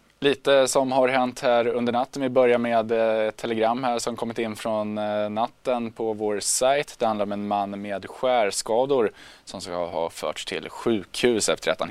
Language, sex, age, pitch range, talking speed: Swedish, male, 20-39, 105-130 Hz, 180 wpm